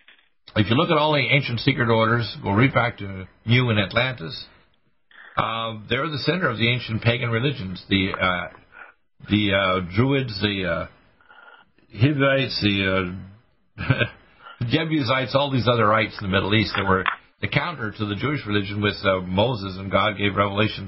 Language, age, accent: English, 50-69, American